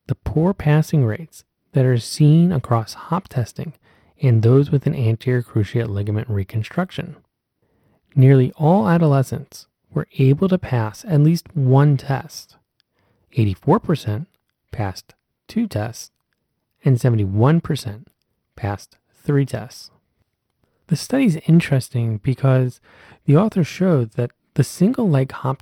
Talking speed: 120 wpm